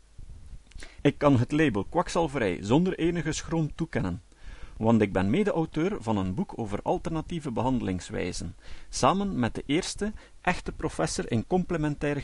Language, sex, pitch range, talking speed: Dutch, male, 105-170 Hz, 130 wpm